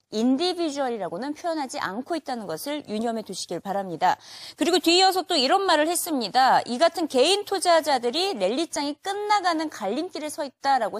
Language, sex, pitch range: Korean, female, 225-335 Hz